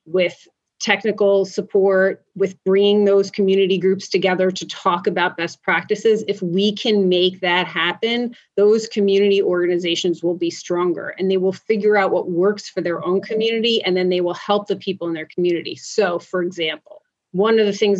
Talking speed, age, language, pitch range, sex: 180 wpm, 30-49, English, 180-205 Hz, female